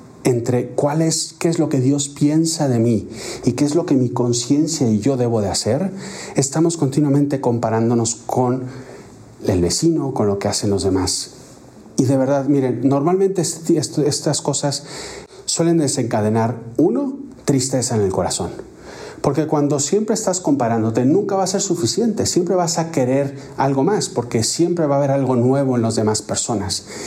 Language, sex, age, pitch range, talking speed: Spanish, male, 40-59, 125-170 Hz, 170 wpm